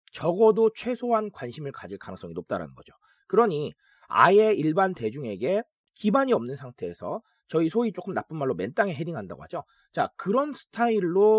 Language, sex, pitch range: Korean, male, 170-240 Hz